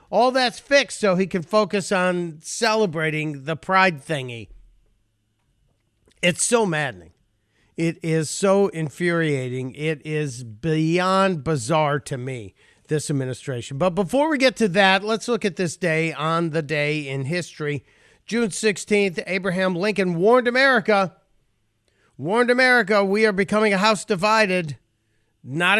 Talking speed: 135 wpm